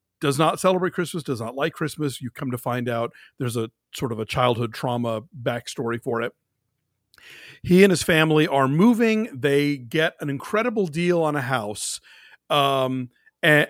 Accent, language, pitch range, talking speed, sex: American, English, 125-170 Hz, 170 wpm, male